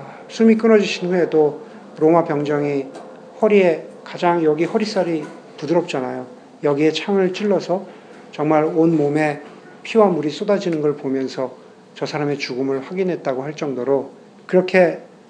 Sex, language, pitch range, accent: male, Korean, 155-215 Hz, native